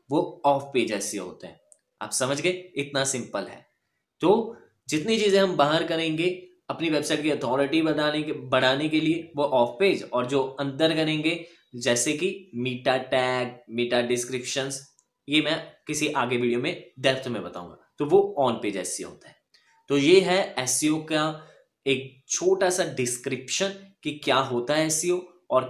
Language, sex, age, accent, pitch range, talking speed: Hindi, male, 10-29, native, 135-180 Hz, 165 wpm